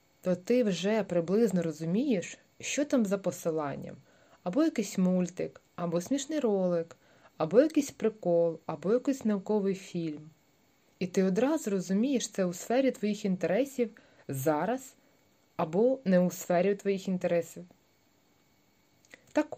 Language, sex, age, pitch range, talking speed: Ukrainian, female, 20-39, 160-220 Hz, 120 wpm